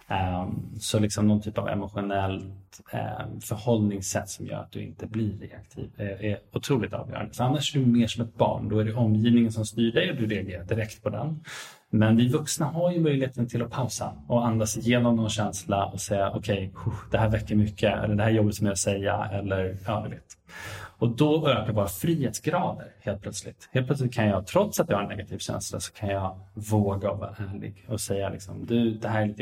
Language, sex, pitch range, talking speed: English, male, 100-120 Hz, 210 wpm